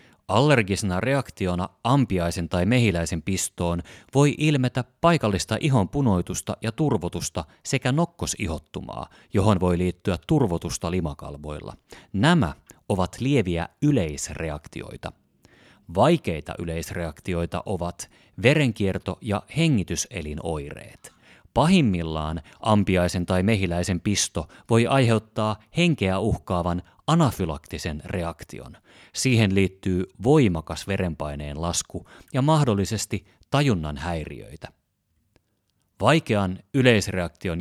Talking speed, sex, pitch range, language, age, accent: 85 wpm, male, 85-115 Hz, Finnish, 30-49, native